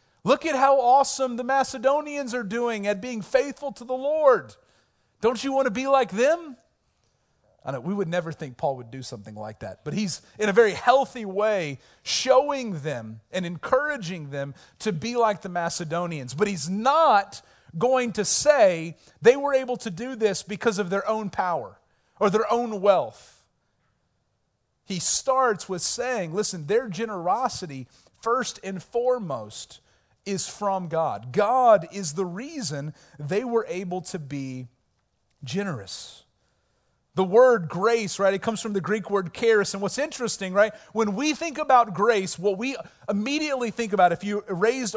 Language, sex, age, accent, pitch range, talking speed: English, male, 40-59, American, 180-250 Hz, 165 wpm